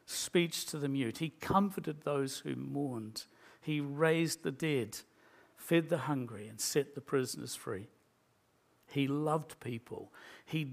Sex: male